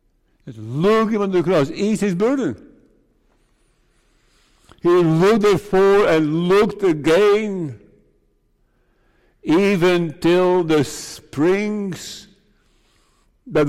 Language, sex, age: English, male, 60-79